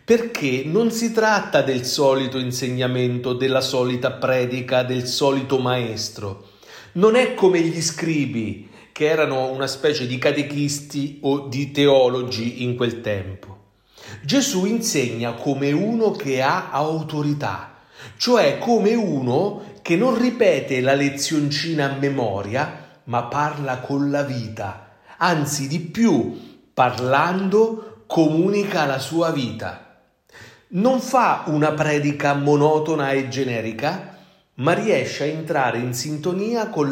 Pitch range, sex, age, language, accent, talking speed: 125-165 Hz, male, 40-59, Italian, native, 120 wpm